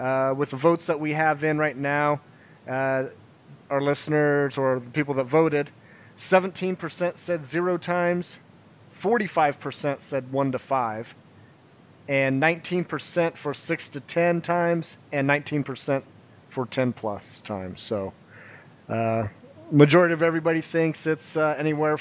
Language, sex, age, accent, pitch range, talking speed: English, male, 30-49, American, 130-165 Hz, 135 wpm